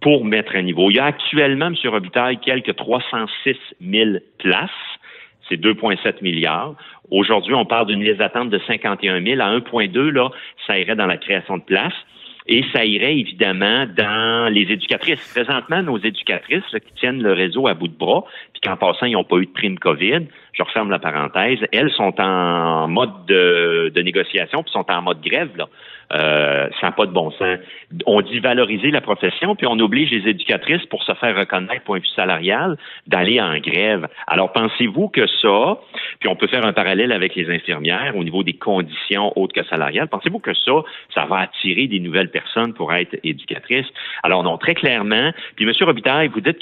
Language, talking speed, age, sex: French, 190 wpm, 50-69, male